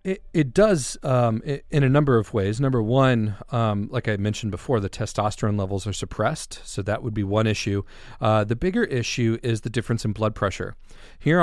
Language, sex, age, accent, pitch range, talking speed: English, male, 40-59, American, 100-125 Hz, 205 wpm